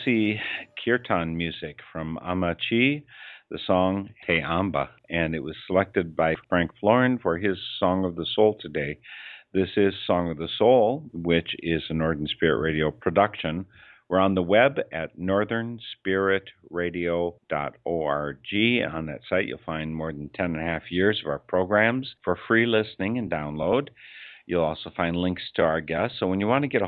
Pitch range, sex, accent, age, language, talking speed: 80-95 Hz, male, American, 50-69, English, 170 wpm